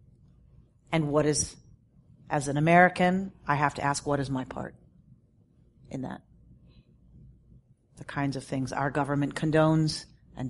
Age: 40-59